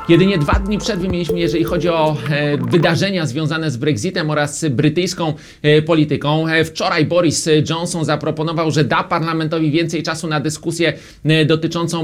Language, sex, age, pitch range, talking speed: Polish, male, 30-49, 155-175 Hz, 135 wpm